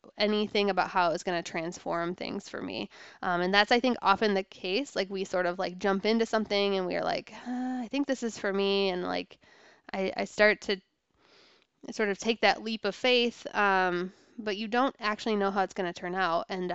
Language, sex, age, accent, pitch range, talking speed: English, female, 20-39, American, 185-220 Hz, 225 wpm